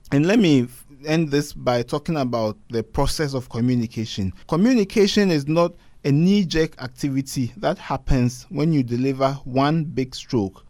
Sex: male